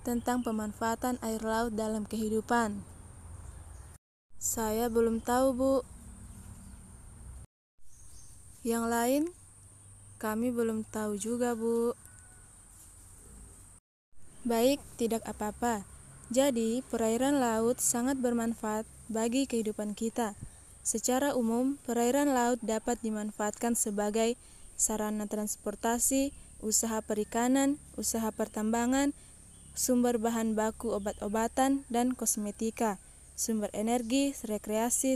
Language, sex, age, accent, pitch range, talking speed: Indonesian, female, 20-39, native, 210-240 Hz, 85 wpm